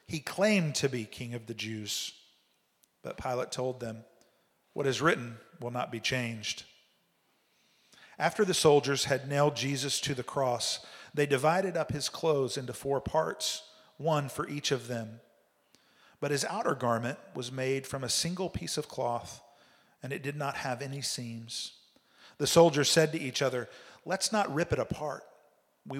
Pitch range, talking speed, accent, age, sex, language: 120-145 Hz, 165 wpm, American, 50-69, male, English